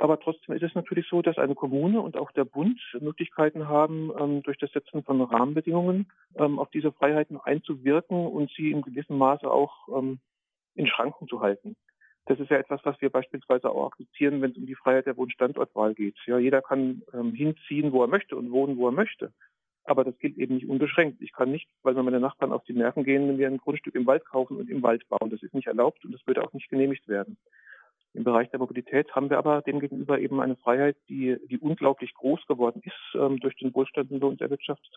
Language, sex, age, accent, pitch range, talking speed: German, male, 40-59, German, 130-150 Hz, 220 wpm